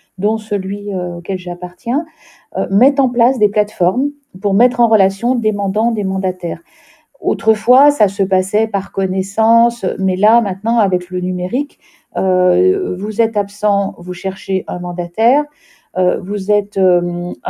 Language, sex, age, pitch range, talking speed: French, female, 50-69, 190-235 Hz, 145 wpm